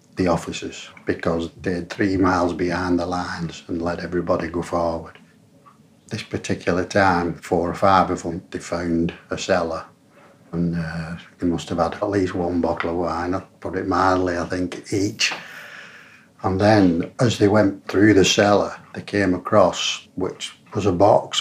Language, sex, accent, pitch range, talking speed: English, male, British, 90-100 Hz, 170 wpm